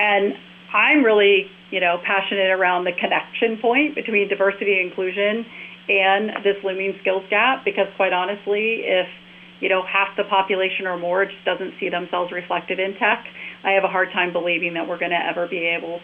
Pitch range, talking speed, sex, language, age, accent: 180-200 Hz, 185 wpm, female, English, 40-59, American